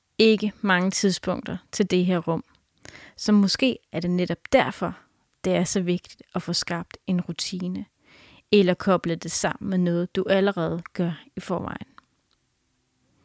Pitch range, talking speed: 180-210 Hz, 150 wpm